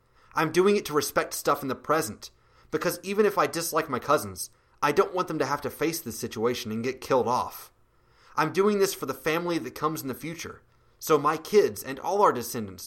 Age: 30-49